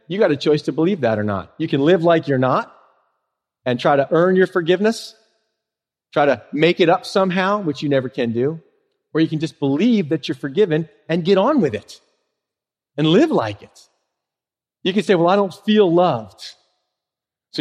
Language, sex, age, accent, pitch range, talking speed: English, male, 40-59, American, 150-220 Hz, 200 wpm